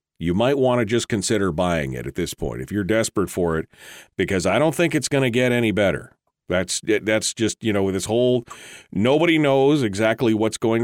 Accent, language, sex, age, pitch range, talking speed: American, English, male, 50-69, 90-115 Hz, 215 wpm